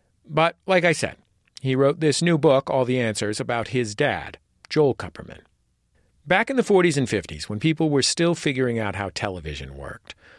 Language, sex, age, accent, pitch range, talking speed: English, male, 40-59, American, 105-155 Hz, 185 wpm